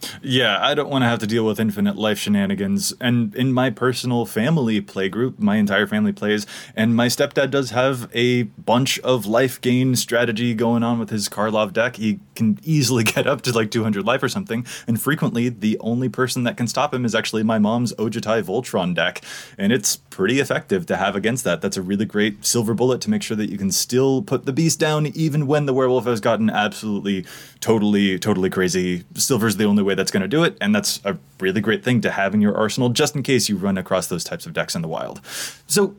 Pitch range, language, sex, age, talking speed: 110-145 Hz, English, male, 20-39, 225 wpm